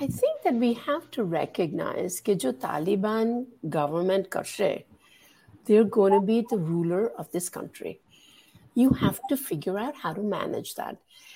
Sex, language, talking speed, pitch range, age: female, Gujarati, 160 wpm, 190-270 Hz, 60-79